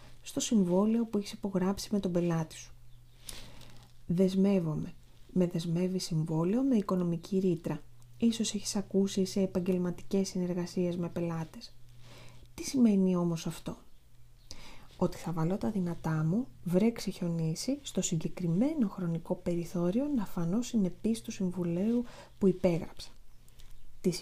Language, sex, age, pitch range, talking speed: Greek, female, 30-49, 165-225 Hz, 120 wpm